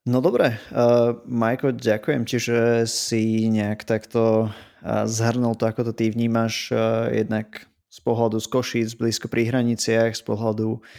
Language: Slovak